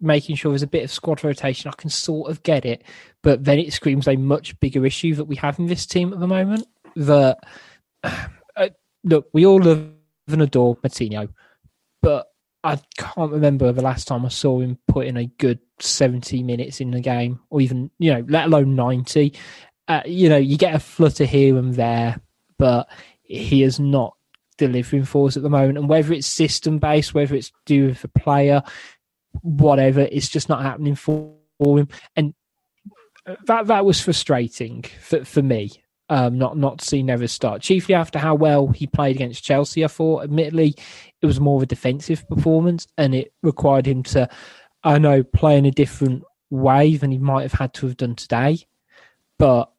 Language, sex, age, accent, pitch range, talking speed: English, male, 20-39, British, 135-160 Hz, 190 wpm